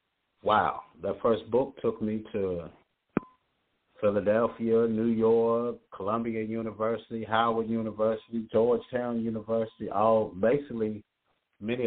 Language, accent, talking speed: English, American, 95 wpm